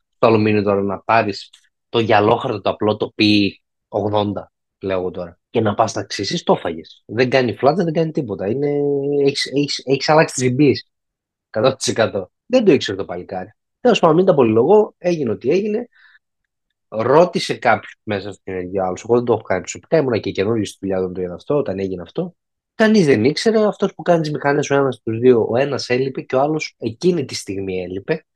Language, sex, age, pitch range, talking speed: Greek, male, 20-39, 100-155 Hz, 195 wpm